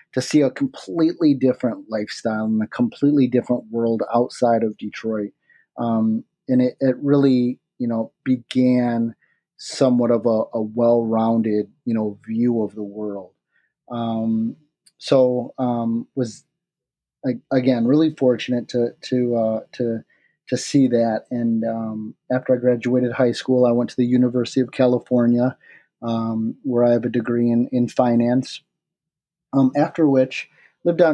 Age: 30-49